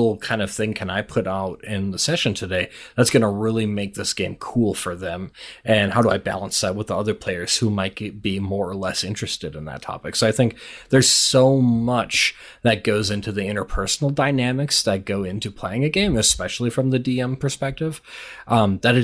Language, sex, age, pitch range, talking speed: English, male, 30-49, 95-115 Hz, 210 wpm